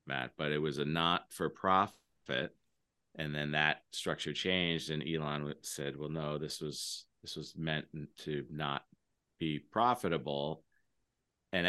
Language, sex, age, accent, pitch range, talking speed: English, male, 30-49, American, 70-80 Hz, 145 wpm